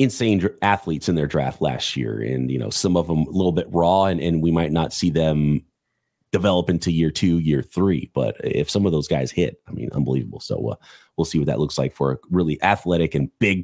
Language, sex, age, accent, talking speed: English, male, 30-49, American, 240 wpm